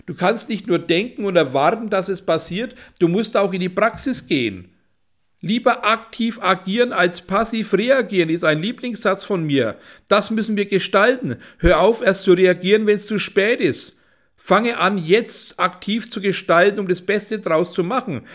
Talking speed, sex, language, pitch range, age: 175 wpm, male, German, 155-210 Hz, 60-79